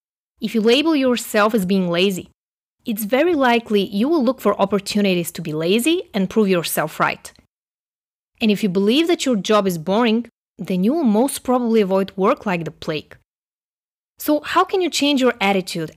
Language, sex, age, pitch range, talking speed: English, female, 20-39, 190-255 Hz, 180 wpm